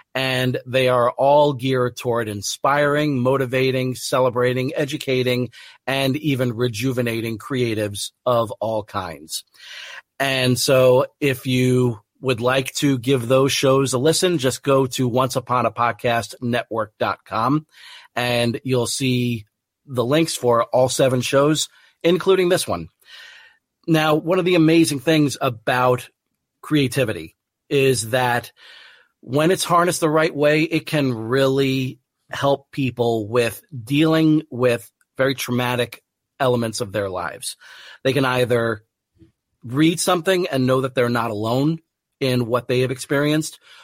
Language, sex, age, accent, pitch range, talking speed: English, male, 40-59, American, 120-140 Hz, 125 wpm